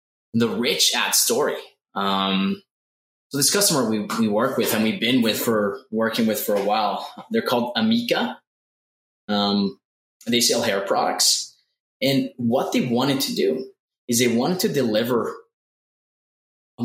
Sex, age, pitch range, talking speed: male, 20-39, 110-150 Hz, 145 wpm